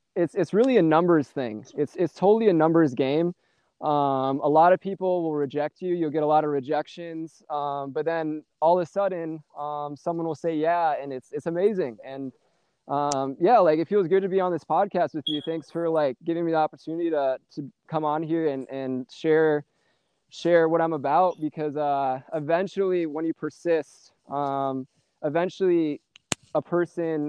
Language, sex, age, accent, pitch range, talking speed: English, male, 20-39, American, 145-170 Hz, 185 wpm